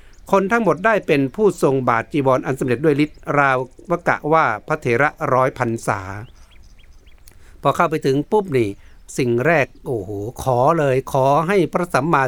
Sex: male